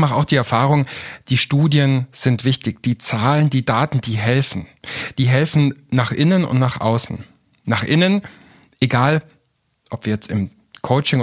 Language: German